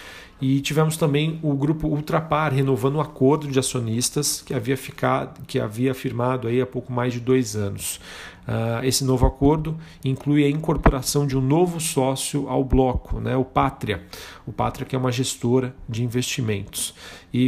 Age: 40-59